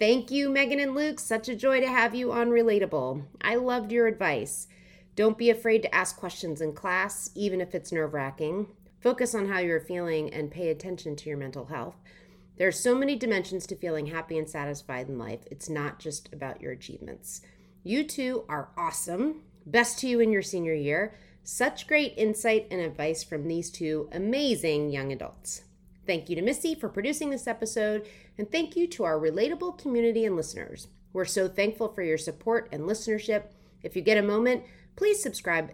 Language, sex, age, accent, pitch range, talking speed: English, female, 30-49, American, 165-230 Hz, 190 wpm